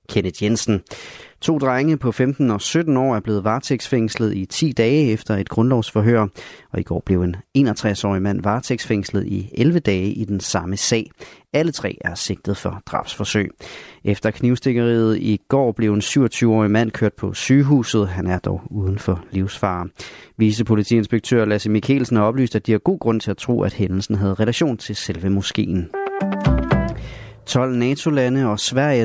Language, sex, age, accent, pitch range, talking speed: Danish, male, 30-49, native, 100-130 Hz, 165 wpm